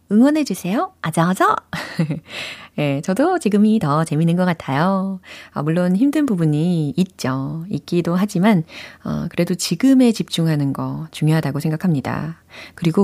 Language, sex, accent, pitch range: Korean, female, native, 155-220 Hz